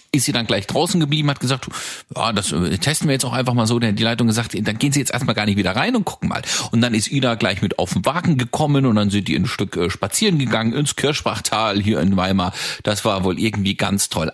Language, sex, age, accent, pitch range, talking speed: German, male, 40-59, German, 105-140 Hz, 260 wpm